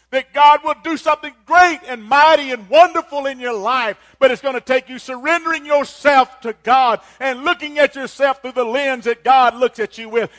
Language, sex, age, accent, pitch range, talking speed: English, male, 50-69, American, 210-280 Hz, 210 wpm